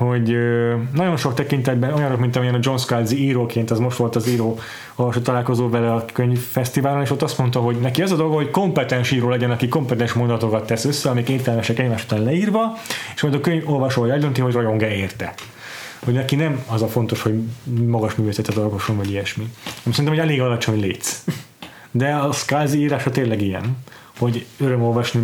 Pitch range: 110-130 Hz